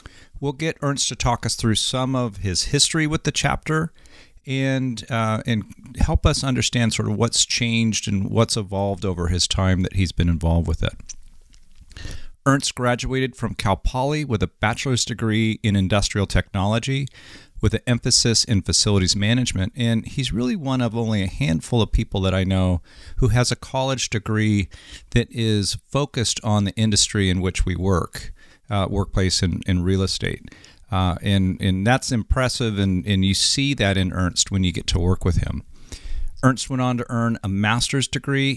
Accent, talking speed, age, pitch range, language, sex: American, 180 wpm, 40-59, 95-125 Hz, English, male